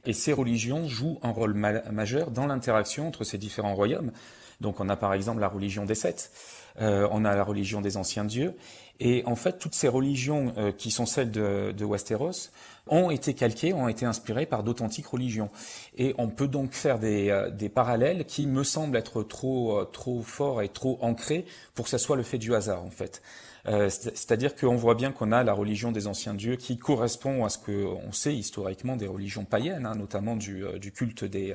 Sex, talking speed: male, 205 wpm